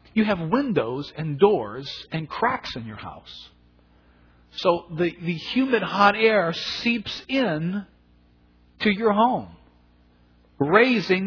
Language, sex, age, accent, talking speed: English, male, 50-69, American, 115 wpm